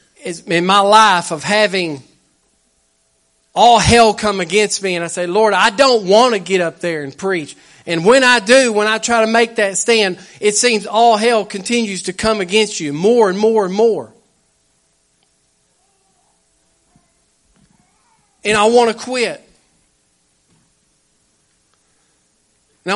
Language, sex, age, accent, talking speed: English, male, 40-59, American, 140 wpm